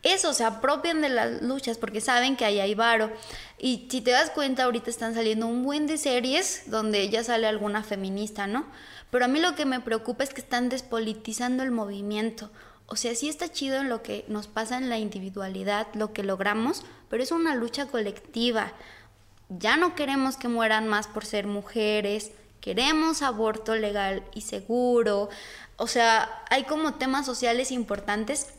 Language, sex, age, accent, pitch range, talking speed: Spanish, female, 20-39, Mexican, 215-265 Hz, 180 wpm